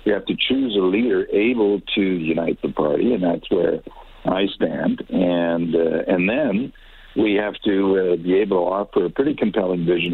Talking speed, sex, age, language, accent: 190 wpm, male, 60-79, English, American